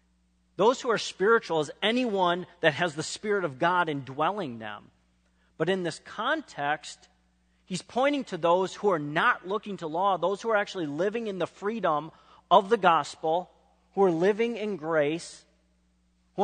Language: English